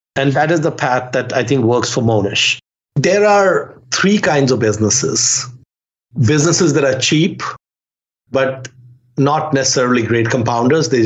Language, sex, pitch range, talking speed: English, male, 115-135 Hz, 145 wpm